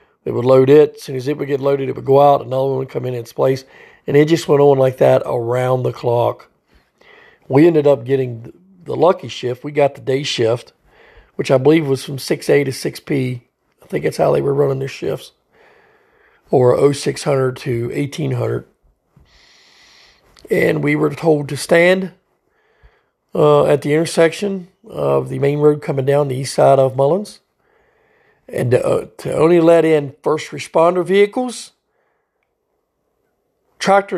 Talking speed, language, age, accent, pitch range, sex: 170 wpm, English, 40-59, American, 130-170 Hz, male